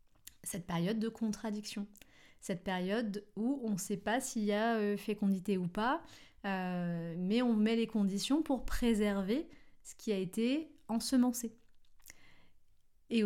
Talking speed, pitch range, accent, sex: 140 wpm, 185-240 Hz, French, female